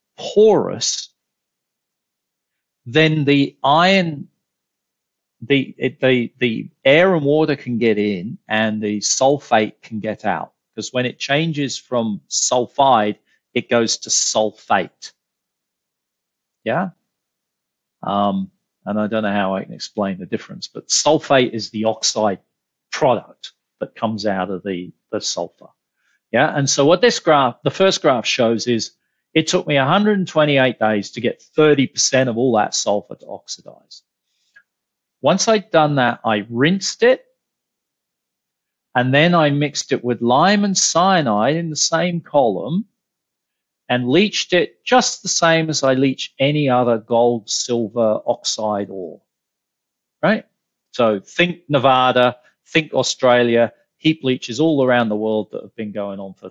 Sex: male